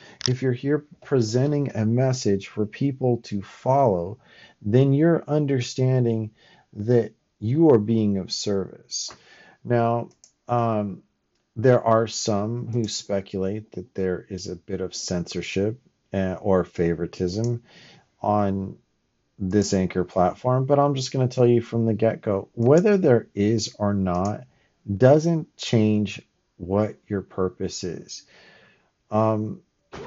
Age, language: 40-59, English